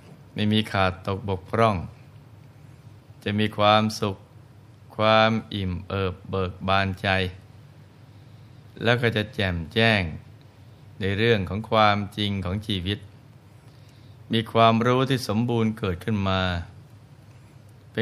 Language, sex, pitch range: Thai, male, 100-120 Hz